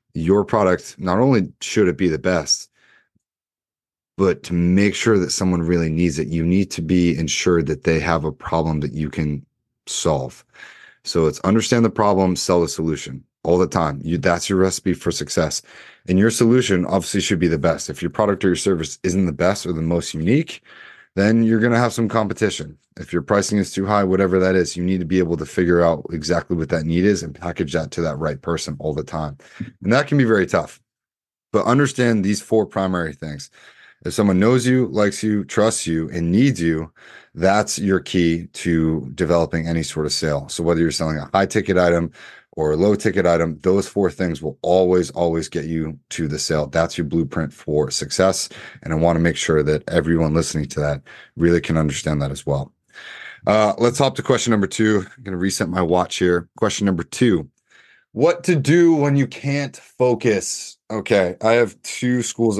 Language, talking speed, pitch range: English, 205 wpm, 80-105 Hz